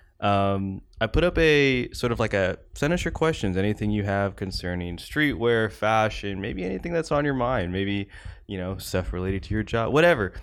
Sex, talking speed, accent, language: male, 195 wpm, American, English